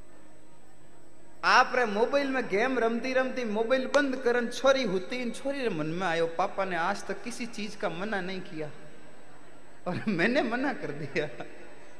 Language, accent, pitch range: Hindi, native, 170-250 Hz